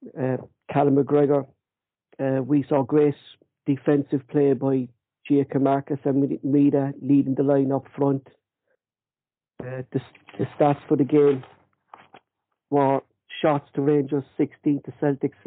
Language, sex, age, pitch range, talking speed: English, male, 60-79, 135-150 Hz, 130 wpm